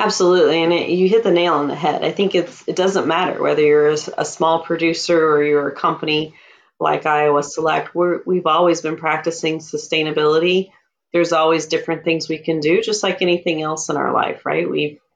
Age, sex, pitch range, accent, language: 30-49, female, 150-180 Hz, American, Chinese